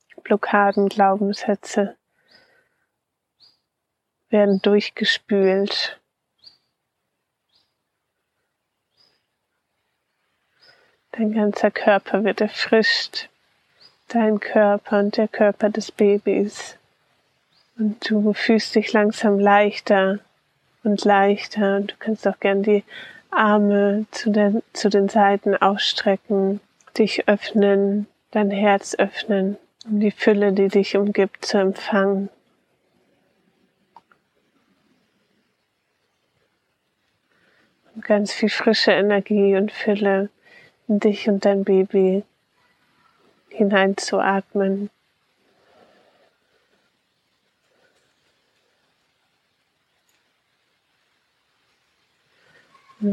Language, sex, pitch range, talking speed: German, female, 200-215 Hz, 70 wpm